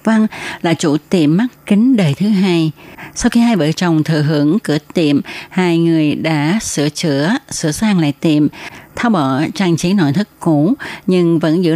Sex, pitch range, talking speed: female, 150-195 Hz, 190 wpm